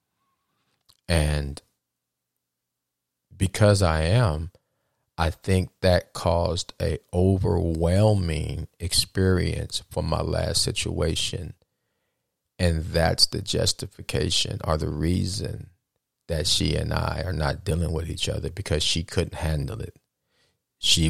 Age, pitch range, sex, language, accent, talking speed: 40-59, 75-95 Hz, male, English, American, 110 wpm